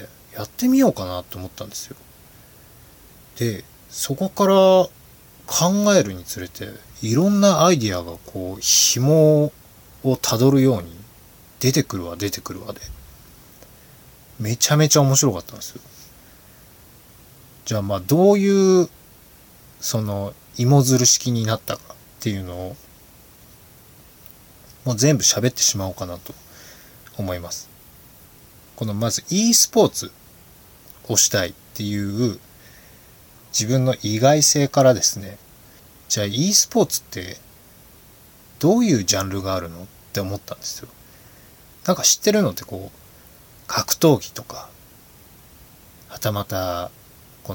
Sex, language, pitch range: male, Japanese, 95-140 Hz